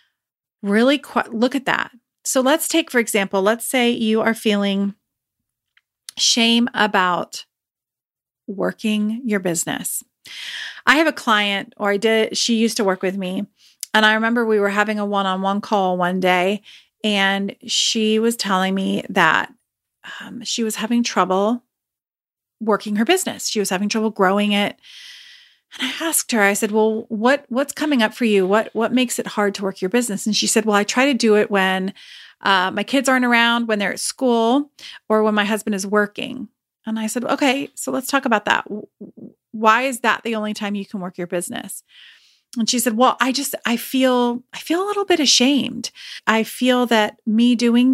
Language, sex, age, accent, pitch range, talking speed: English, female, 40-59, American, 200-245 Hz, 185 wpm